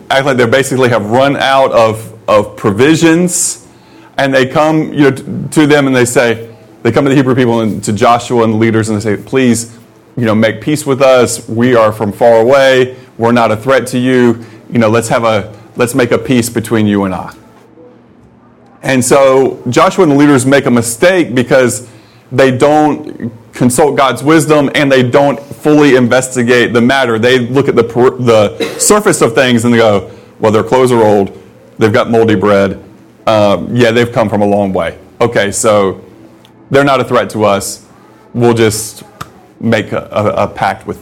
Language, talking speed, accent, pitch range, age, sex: English, 195 wpm, American, 110-135 Hz, 30-49, male